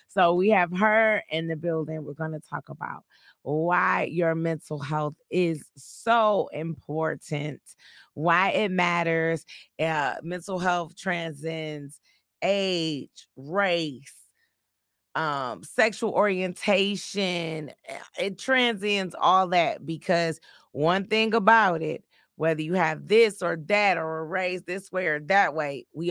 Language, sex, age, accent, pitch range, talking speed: English, female, 30-49, American, 155-190 Hz, 125 wpm